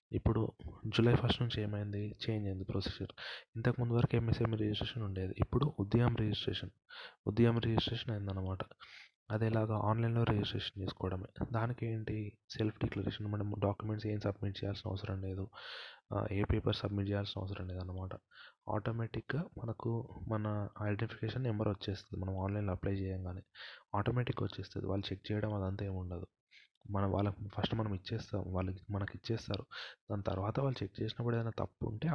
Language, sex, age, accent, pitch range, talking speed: Telugu, male, 20-39, native, 100-115 Hz, 140 wpm